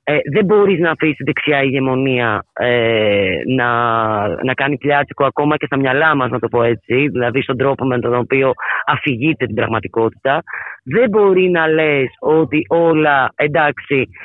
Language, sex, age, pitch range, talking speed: Greek, female, 30-49, 125-160 Hz, 150 wpm